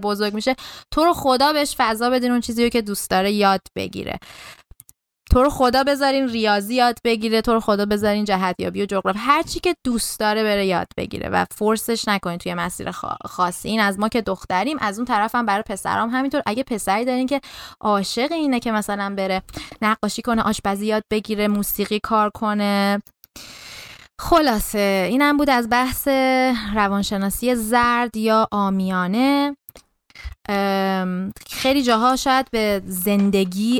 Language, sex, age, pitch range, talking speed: Persian, female, 20-39, 195-250 Hz, 155 wpm